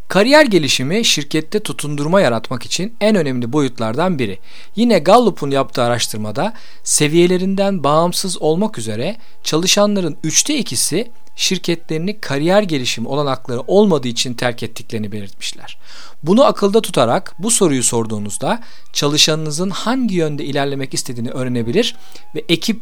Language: Turkish